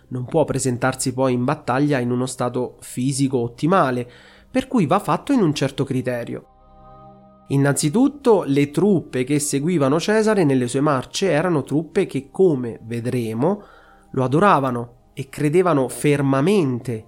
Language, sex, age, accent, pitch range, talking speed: Italian, male, 30-49, native, 130-175 Hz, 135 wpm